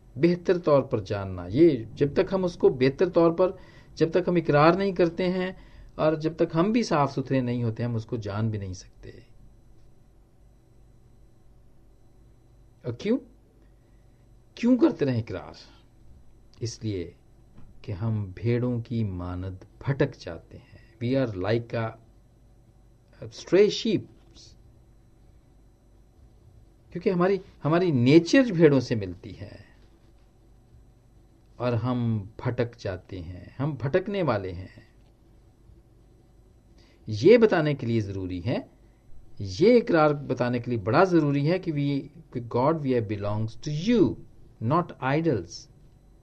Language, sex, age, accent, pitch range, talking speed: Hindi, male, 50-69, native, 115-145 Hz, 120 wpm